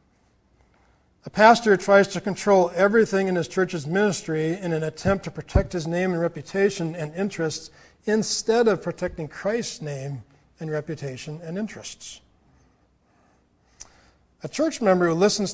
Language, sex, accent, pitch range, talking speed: English, male, American, 160-195 Hz, 135 wpm